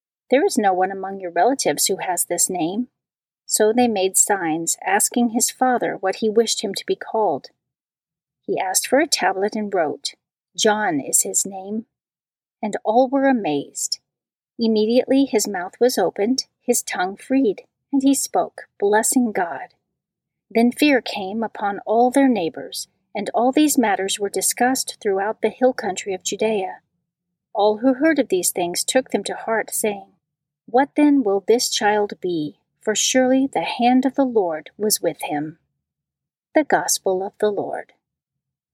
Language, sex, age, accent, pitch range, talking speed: English, female, 40-59, American, 190-255 Hz, 160 wpm